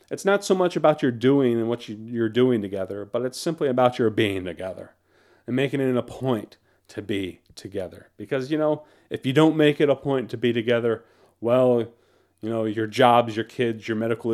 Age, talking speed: 40-59, 205 wpm